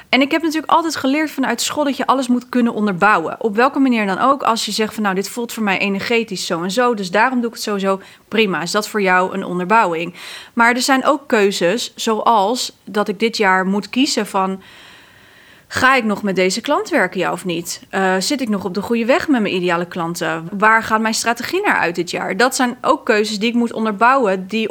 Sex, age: female, 30-49